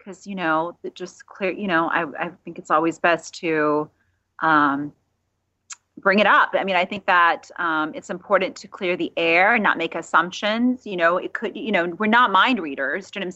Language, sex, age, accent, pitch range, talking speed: English, female, 30-49, American, 165-205 Hz, 215 wpm